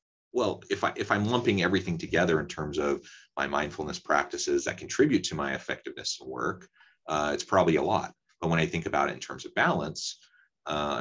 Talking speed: 200 wpm